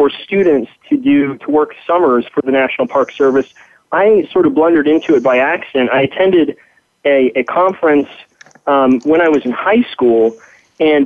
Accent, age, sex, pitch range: American, 30-49, male, 135-155 Hz